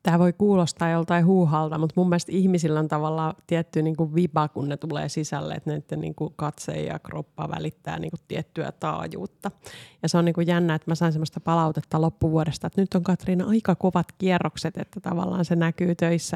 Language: Finnish